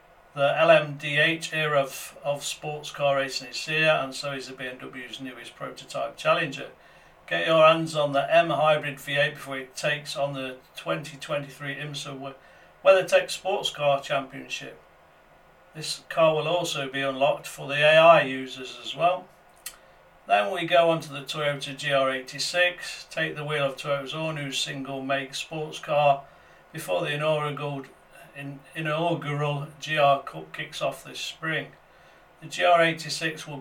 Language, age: English, 50-69